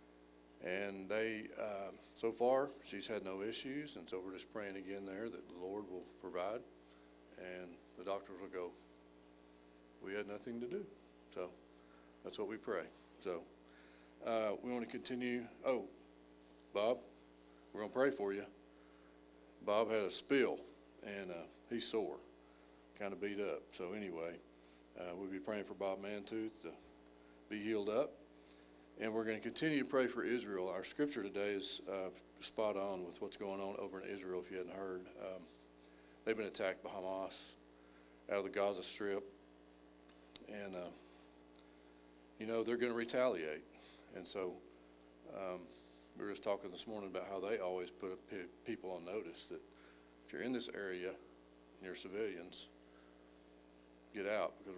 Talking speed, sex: 165 wpm, male